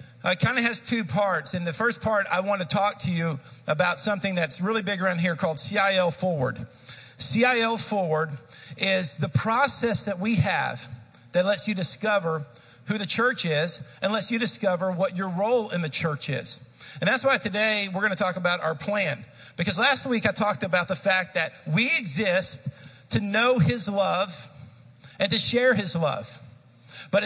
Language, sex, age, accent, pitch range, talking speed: English, male, 50-69, American, 160-210 Hz, 185 wpm